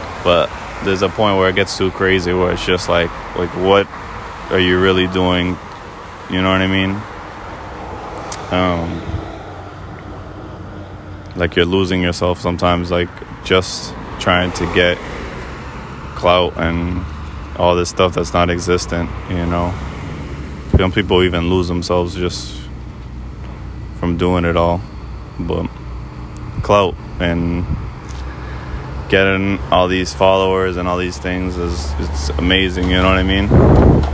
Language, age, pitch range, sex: English, 20-39, 70-90 Hz, male